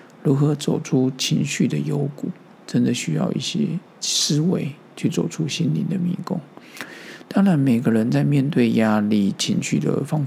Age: 50-69